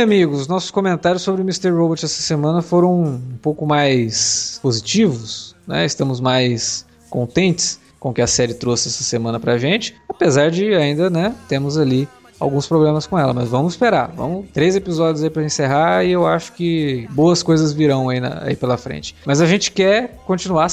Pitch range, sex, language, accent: 130-180 Hz, male, Portuguese, Brazilian